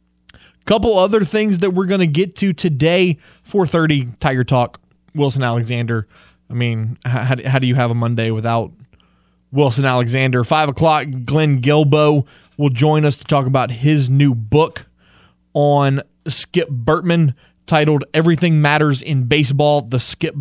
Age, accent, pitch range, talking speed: 20-39, American, 120-150 Hz, 145 wpm